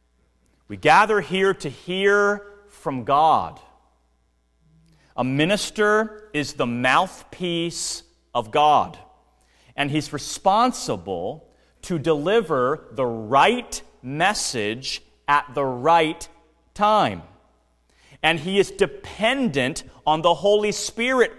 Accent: American